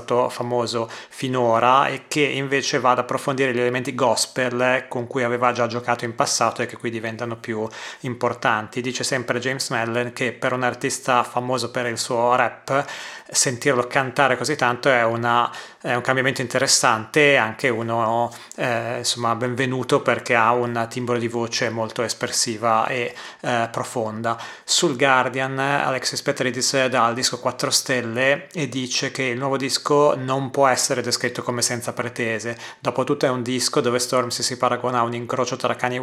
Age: 30-49